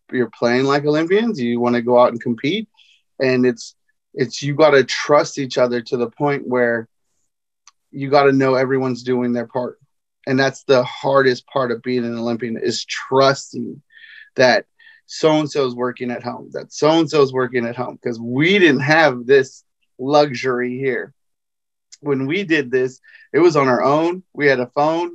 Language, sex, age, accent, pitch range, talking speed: English, male, 30-49, American, 125-155 Hz, 180 wpm